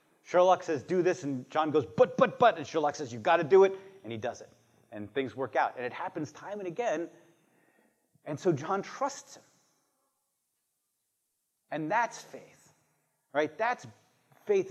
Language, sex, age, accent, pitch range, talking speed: English, male, 30-49, American, 125-190 Hz, 175 wpm